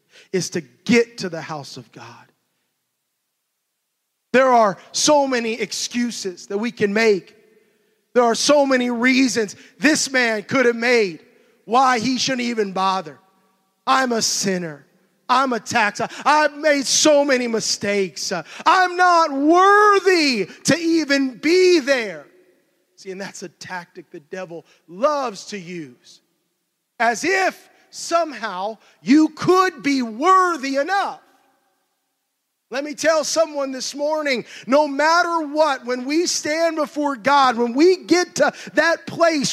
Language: English